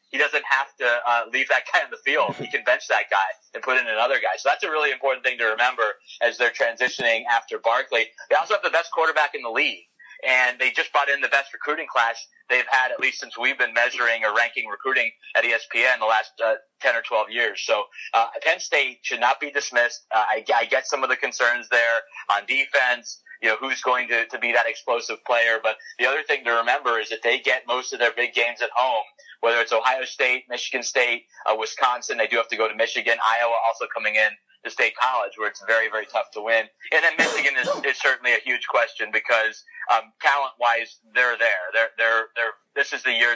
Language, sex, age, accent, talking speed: English, male, 30-49, American, 235 wpm